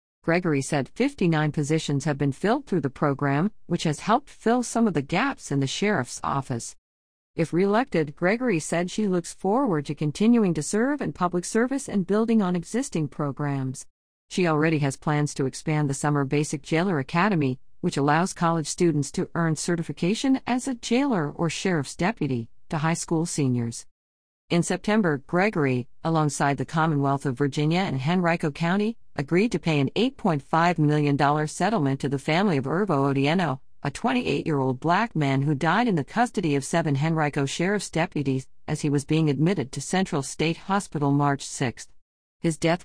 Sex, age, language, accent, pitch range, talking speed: female, 50-69, English, American, 140-180 Hz, 170 wpm